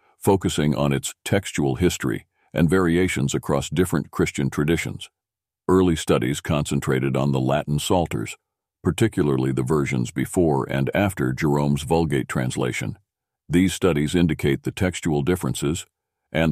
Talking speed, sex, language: 125 wpm, male, English